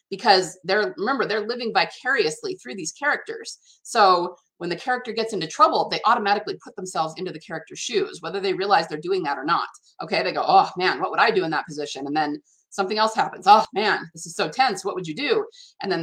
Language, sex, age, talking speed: English, female, 30-49, 230 wpm